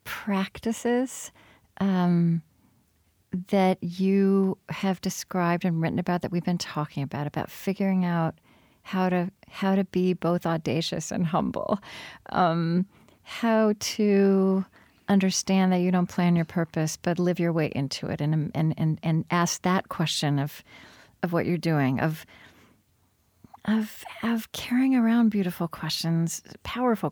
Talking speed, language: 135 wpm, English